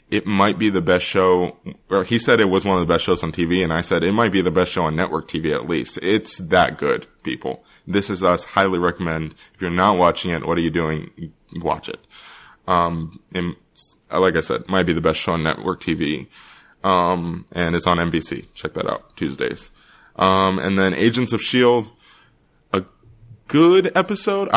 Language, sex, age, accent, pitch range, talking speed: English, male, 20-39, American, 90-110 Hz, 205 wpm